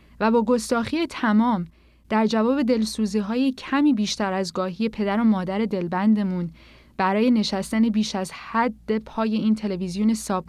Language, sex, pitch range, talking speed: Persian, female, 185-245 Hz, 135 wpm